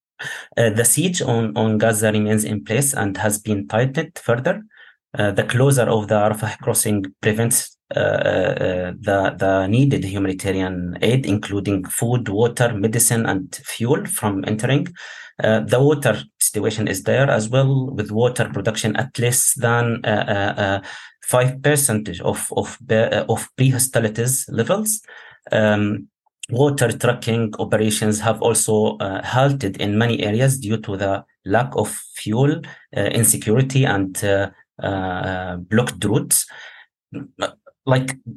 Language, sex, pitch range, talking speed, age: English, male, 105-130 Hz, 135 wpm, 30-49